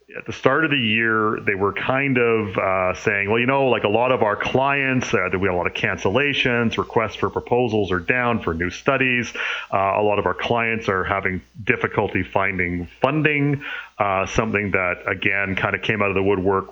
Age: 30-49